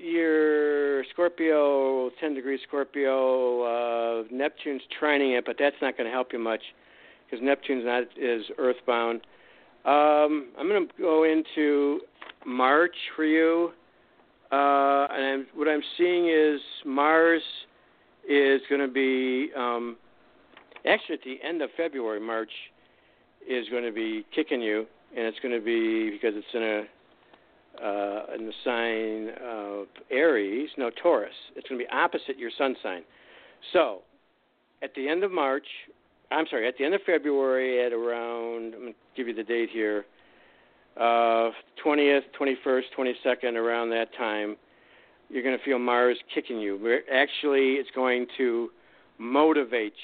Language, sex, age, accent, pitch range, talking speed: English, male, 60-79, American, 115-150 Hz, 145 wpm